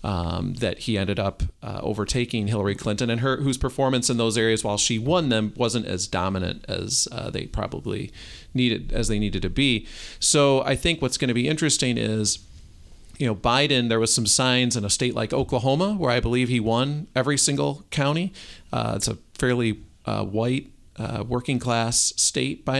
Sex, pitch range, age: male, 105-125 Hz, 40-59